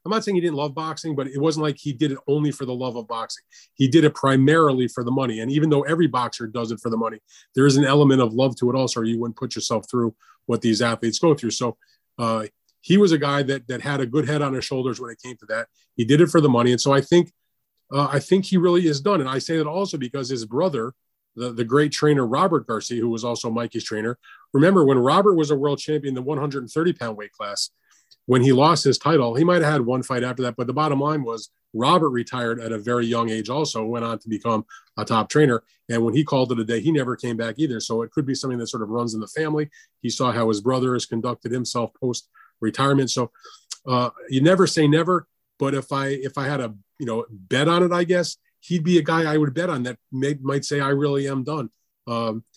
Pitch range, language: 120-150 Hz, English